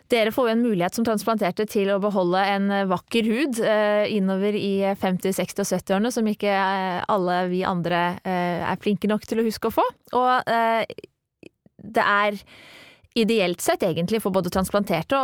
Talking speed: 180 wpm